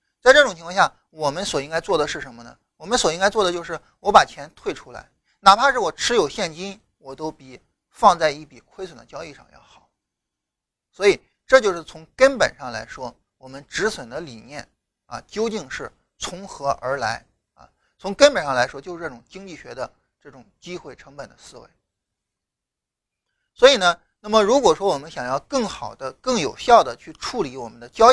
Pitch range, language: 135-205 Hz, Chinese